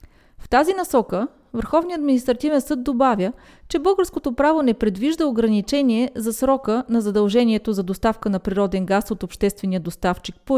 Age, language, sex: 30-49, Bulgarian, female